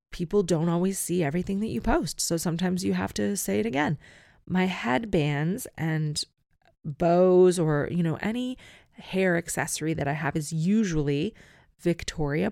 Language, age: English, 30-49